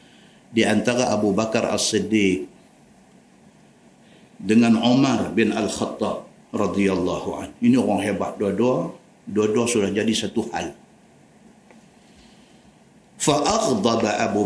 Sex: male